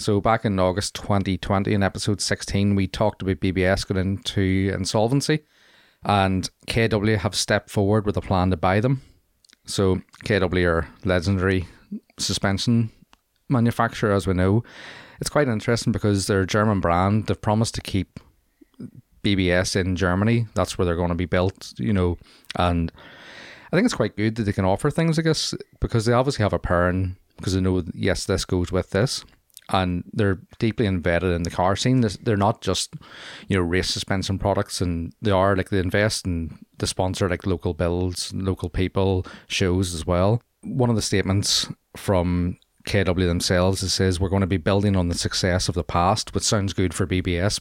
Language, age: English, 30-49